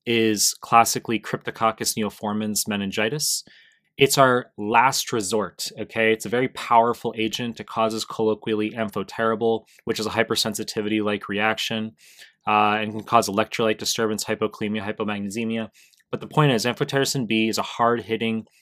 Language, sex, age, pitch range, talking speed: English, male, 20-39, 110-120 Hz, 130 wpm